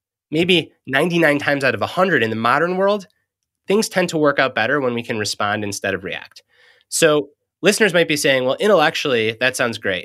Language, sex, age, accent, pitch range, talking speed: English, male, 30-49, American, 120-175 Hz, 195 wpm